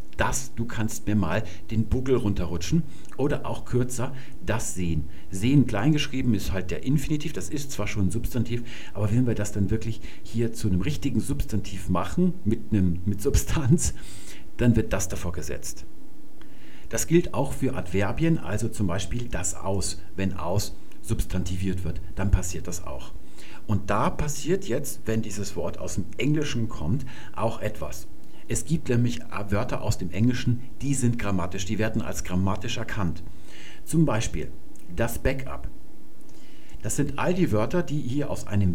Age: 50-69